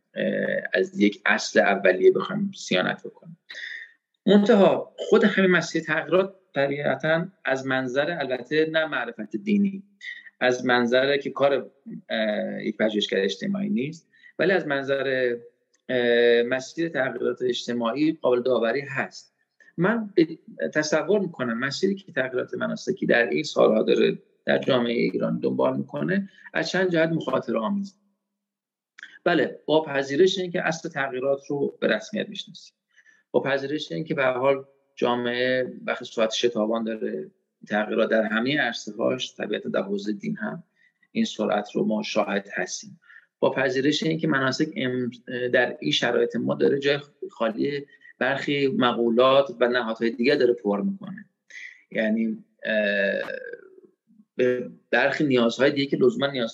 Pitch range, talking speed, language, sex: 120-195 Hz, 130 wpm, Persian, male